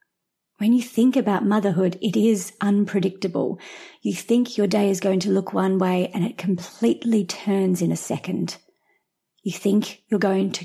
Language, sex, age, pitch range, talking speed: English, female, 30-49, 185-215 Hz, 170 wpm